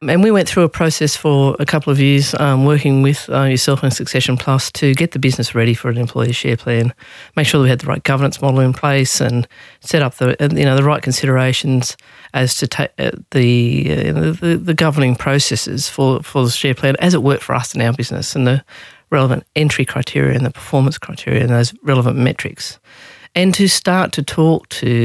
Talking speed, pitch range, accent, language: 220 wpm, 125-150 Hz, Australian, English